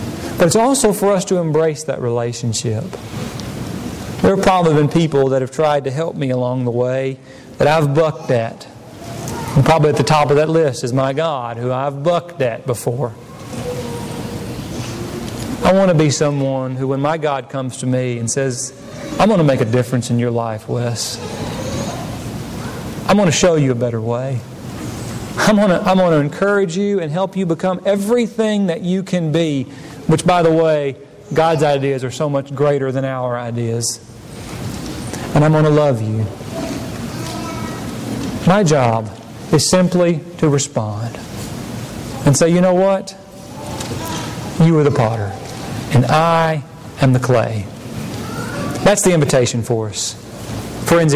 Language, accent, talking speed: English, American, 160 wpm